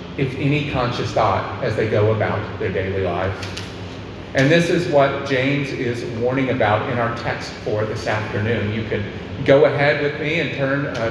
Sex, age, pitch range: male, 40-59, 110-145 Hz